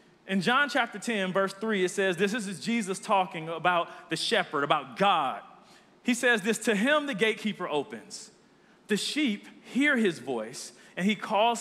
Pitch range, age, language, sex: 185-235 Hz, 40-59, English, male